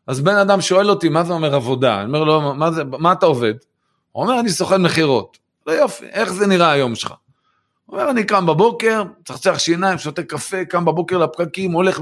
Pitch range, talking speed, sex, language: 140-190 Hz, 220 wpm, male, Hebrew